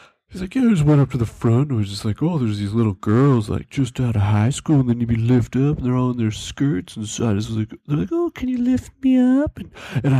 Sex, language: male, English